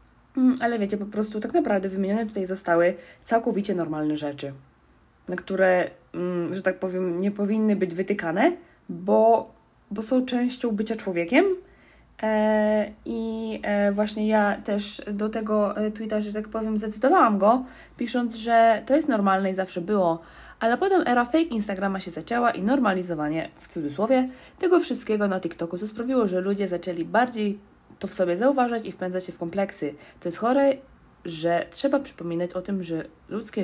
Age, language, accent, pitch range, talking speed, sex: 20-39, Polish, native, 185-230 Hz, 155 wpm, female